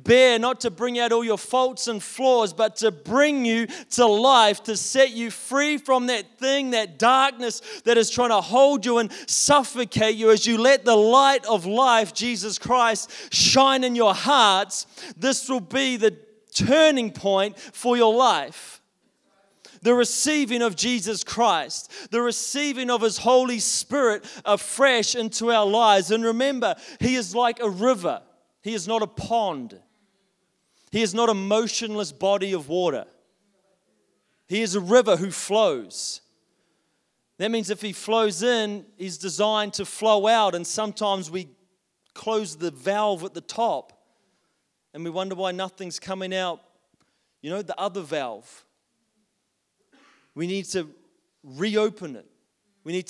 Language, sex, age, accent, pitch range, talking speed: English, male, 30-49, Australian, 195-245 Hz, 155 wpm